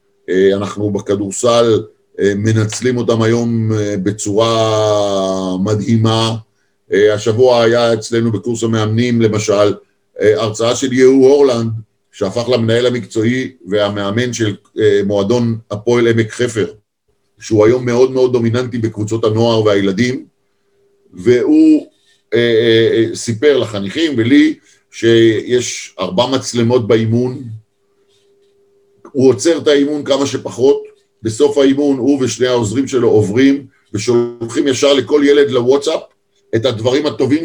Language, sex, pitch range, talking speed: Hebrew, male, 110-150 Hz, 105 wpm